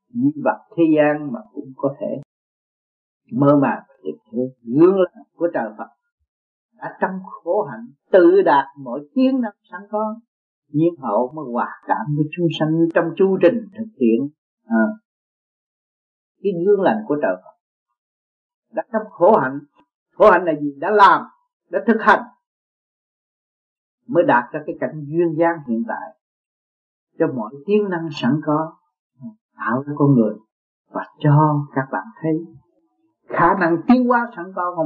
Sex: male